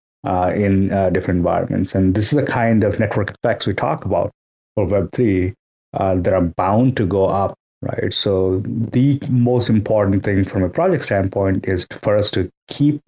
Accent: Indian